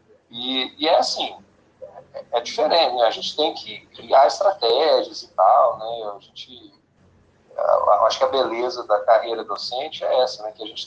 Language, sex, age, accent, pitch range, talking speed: Portuguese, male, 40-59, Brazilian, 115-195 Hz, 175 wpm